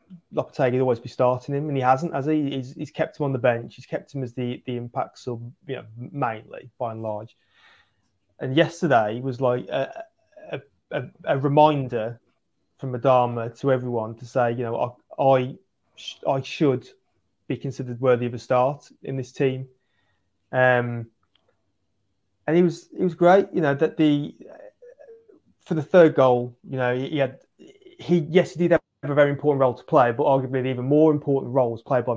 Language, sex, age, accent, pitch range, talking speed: English, male, 20-39, British, 120-140 Hz, 190 wpm